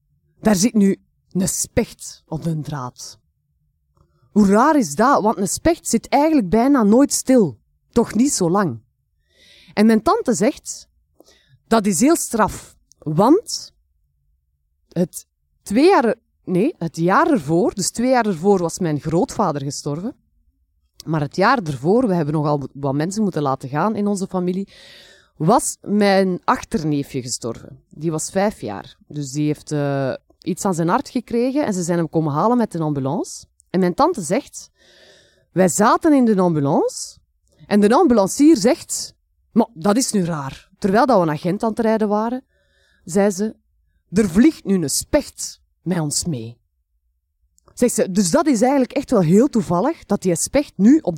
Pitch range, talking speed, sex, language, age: 145-215 Hz, 160 wpm, female, Dutch, 30-49